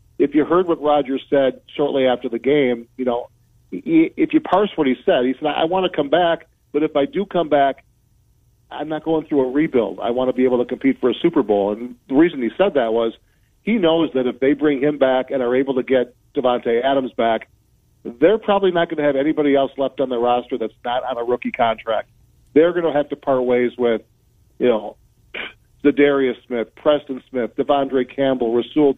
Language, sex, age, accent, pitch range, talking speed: English, male, 40-59, American, 120-145 Hz, 225 wpm